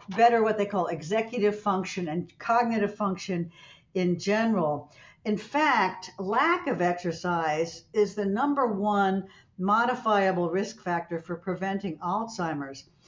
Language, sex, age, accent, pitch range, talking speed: English, female, 60-79, American, 170-220 Hz, 120 wpm